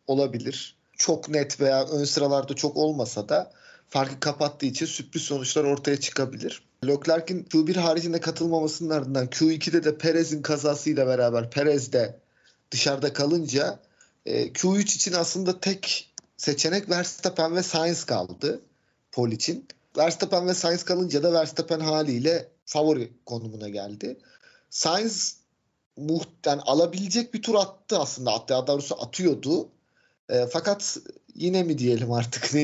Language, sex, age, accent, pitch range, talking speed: Turkish, male, 40-59, native, 135-170 Hz, 125 wpm